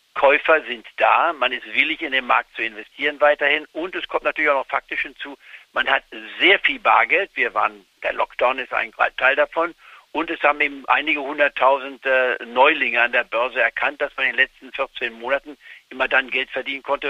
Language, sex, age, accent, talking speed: German, male, 60-79, German, 200 wpm